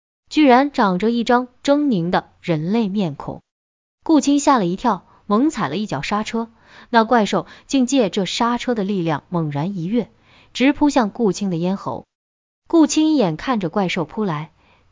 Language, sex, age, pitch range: Chinese, female, 20-39, 175-255 Hz